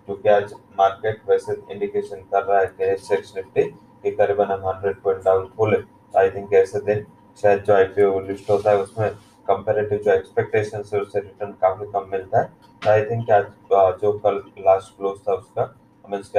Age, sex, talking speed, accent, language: 20-39, male, 180 wpm, Indian, English